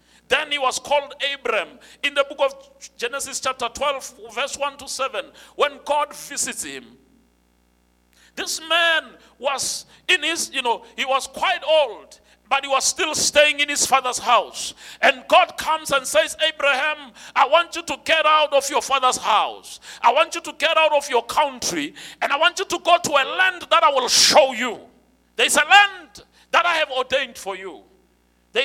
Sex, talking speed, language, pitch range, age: male, 185 wpm, English, 235-315 Hz, 50-69